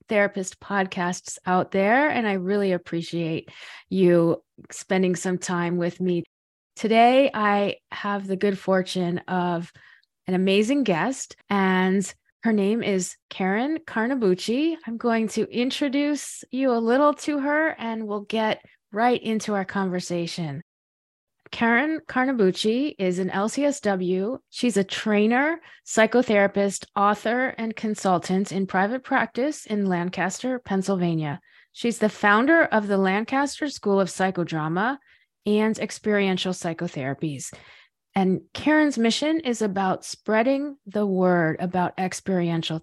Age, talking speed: 20-39, 120 wpm